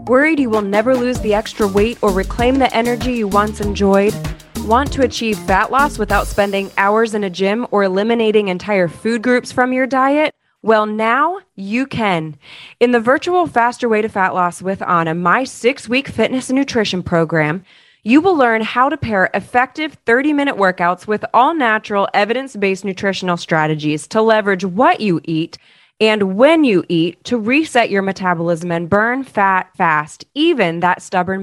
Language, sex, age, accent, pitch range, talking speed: English, female, 20-39, American, 185-245 Hz, 170 wpm